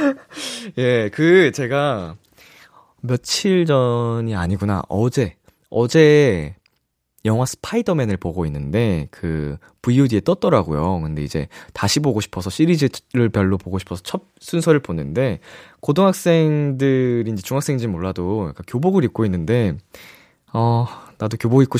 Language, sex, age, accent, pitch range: Korean, male, 20-39, native, 95-155 Hz